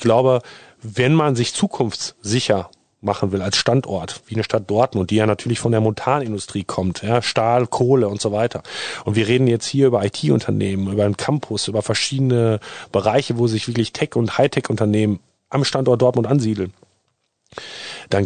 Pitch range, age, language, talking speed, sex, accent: 105-125 Hz, 40-59, German, 170 wpm, male, German